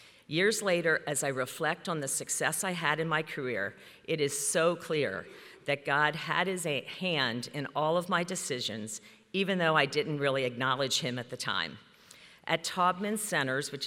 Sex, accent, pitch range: female, American, 140-175 Hz